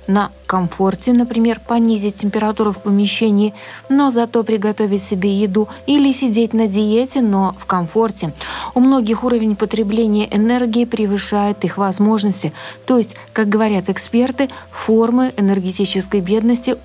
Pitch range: 195-230 Hz